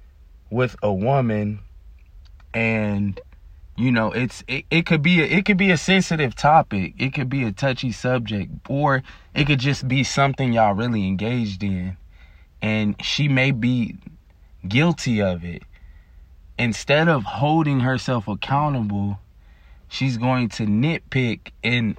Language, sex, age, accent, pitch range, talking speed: English, male, 20-39, American, 90-130 Hz, 140 wpm